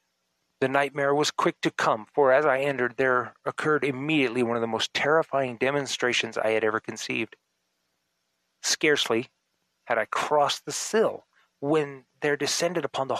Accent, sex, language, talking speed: American, male, English, 155 wpm